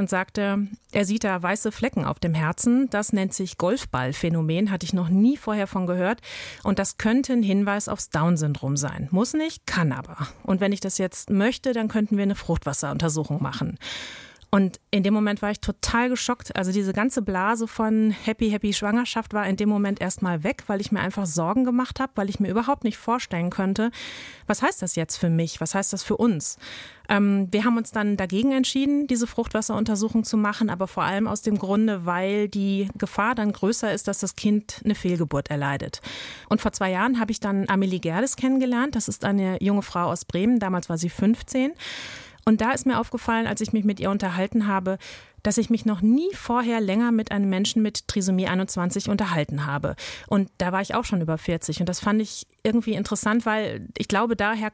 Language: German